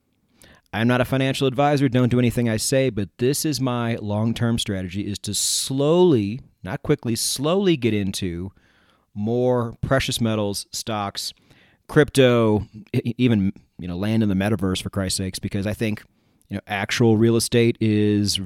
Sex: male